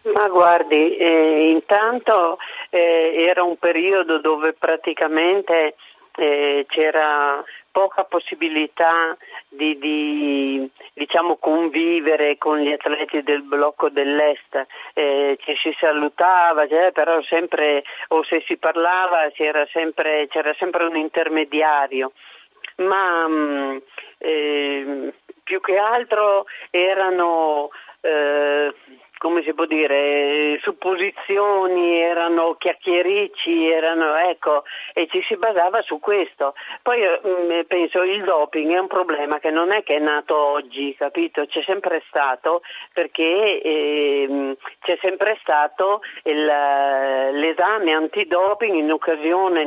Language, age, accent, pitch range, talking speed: Italian, 40-59, native, 150-180 Hz, 110 wpm